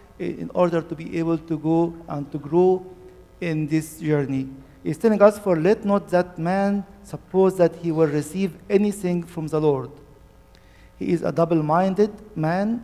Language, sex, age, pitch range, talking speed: English, male, 50-69, 150-180 Hz, 165 wpm